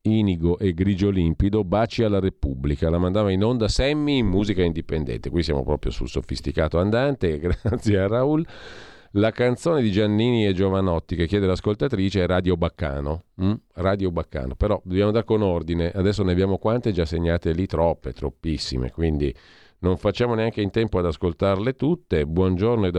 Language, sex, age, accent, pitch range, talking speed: Italian, male, 40-59, native, 85-105 Hz, 165 wpm